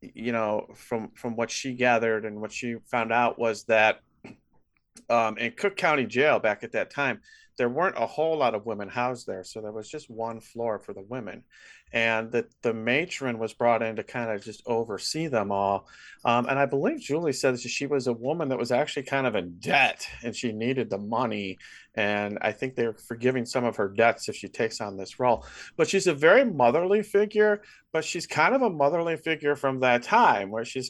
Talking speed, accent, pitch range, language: 215 wpm, American, 115-145 Hz, English